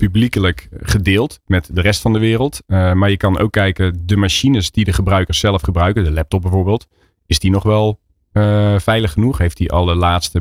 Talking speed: 200 wpm